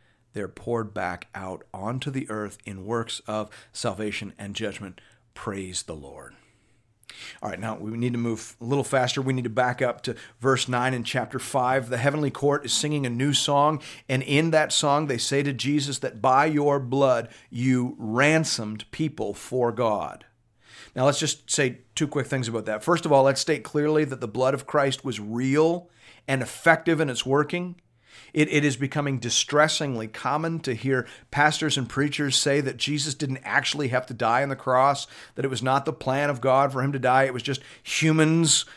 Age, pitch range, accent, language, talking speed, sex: 40-59, 120-150 Hz, American, English, 195 wpm, male